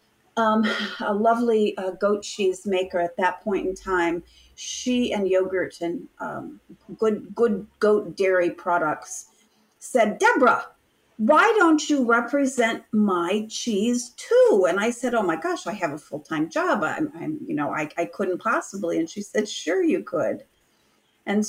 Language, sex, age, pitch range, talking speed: English, female, 40-59, 185-220 Hz, 160 wpm